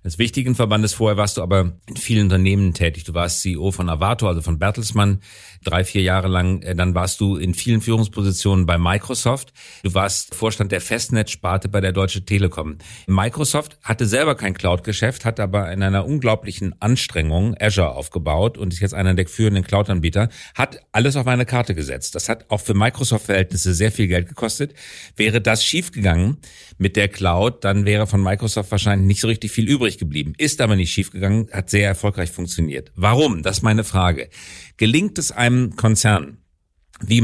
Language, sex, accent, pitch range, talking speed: German, male, German, 95-115 Hz, 175 wpm